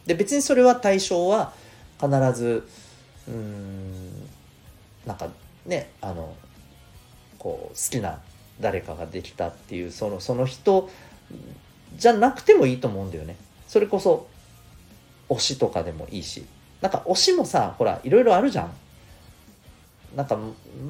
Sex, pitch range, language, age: male, 95-160 Hz, Japanese, 40-59